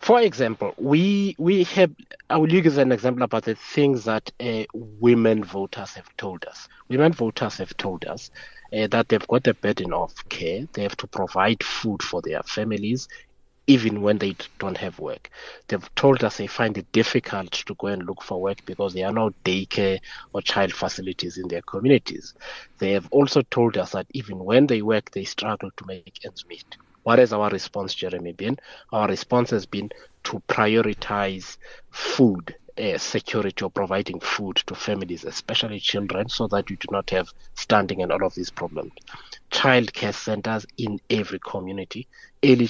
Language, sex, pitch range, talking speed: English, male, 95-125 Hz, 180 wpm